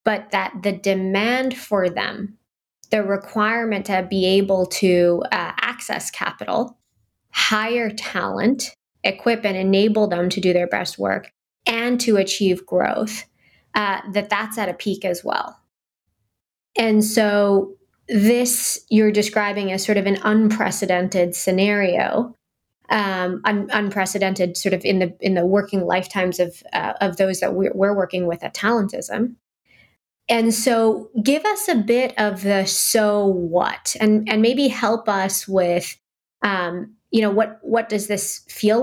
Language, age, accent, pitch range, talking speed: English, 20-39, American, 185-220 Hz, 145 wpm